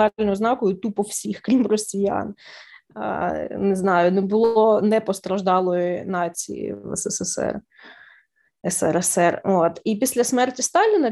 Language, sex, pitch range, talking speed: Ukrainian, female, 195-240 Hz, 110 wpm